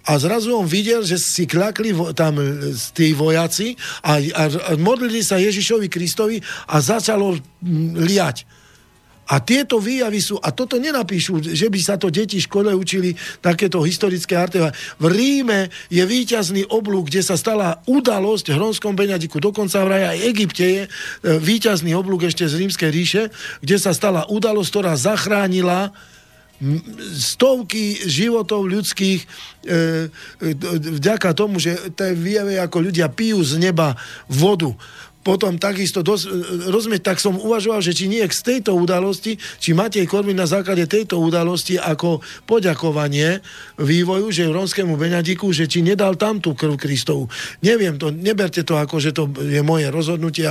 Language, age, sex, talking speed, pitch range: Slovak, 50-69, male, 150 wpm, 160-200 Hz